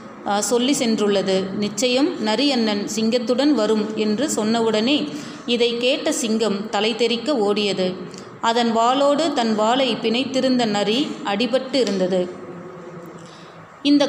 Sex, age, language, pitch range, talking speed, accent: female, 30-49, Tamil, 205-245 Hz, 95 wpm, native